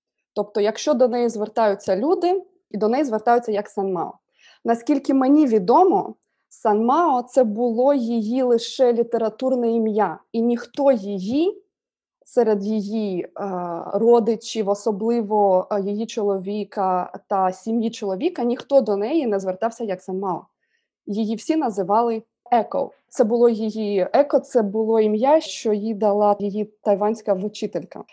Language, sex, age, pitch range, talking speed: Ukrainian, female, 20-39, 205-255 Hz, 125 wpm